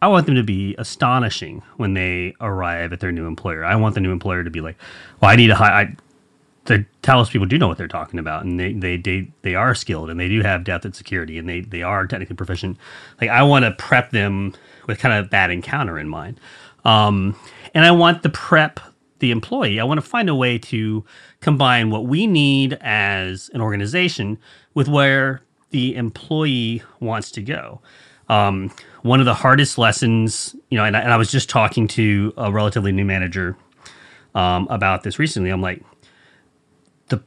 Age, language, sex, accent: 30-49, English, male, American